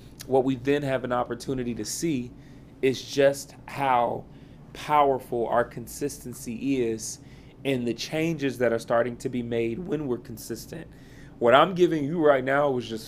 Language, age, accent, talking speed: English, 30-49, American, 160 wpm